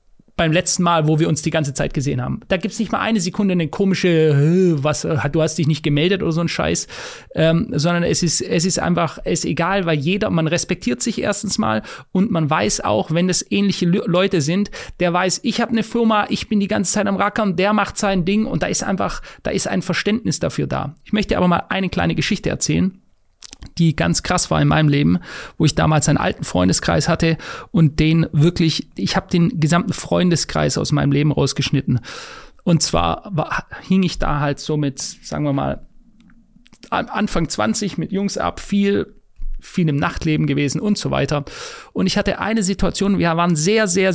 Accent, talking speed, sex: German, 205 wpm, male